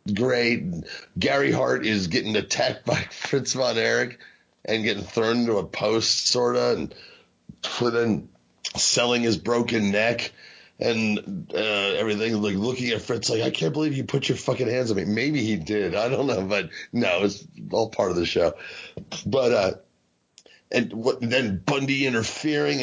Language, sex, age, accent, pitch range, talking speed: English, male, 40-59, American, 115-155 Hz, 160 wpm